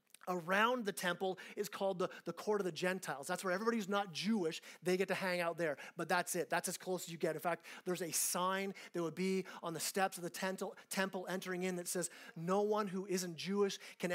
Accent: American